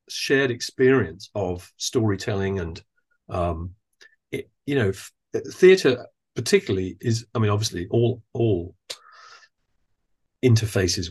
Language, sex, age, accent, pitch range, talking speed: English, male, 40-59, British, 100-135 Hz, 105 wpm